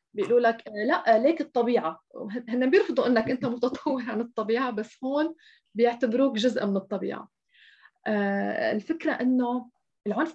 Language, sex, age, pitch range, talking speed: Arabic, female, 20-39, 210-255 Hz, 120 wpm